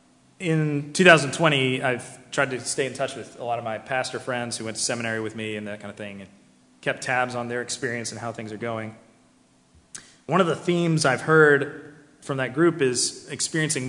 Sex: male